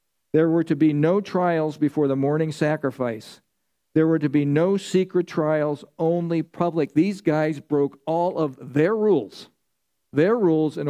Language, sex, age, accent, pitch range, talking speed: English, male, 50-69, American, 140-175 Hz, 160 wpm